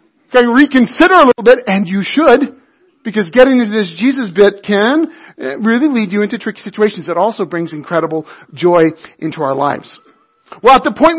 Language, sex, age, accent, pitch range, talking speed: English, male, 40-59, American, 220-315 Hz, 175 wpm